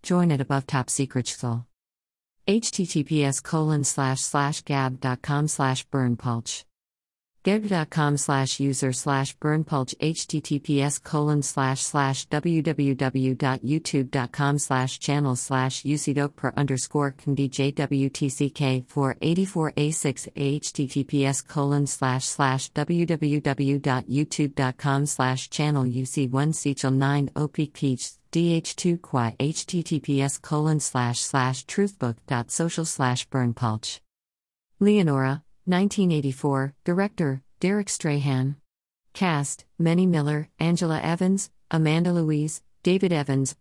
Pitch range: 130-160 Hz